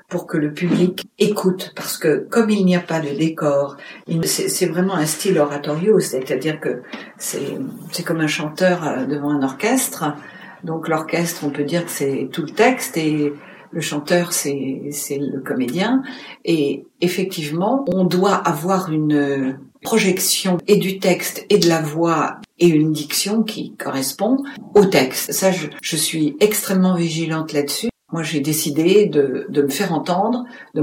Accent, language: French, French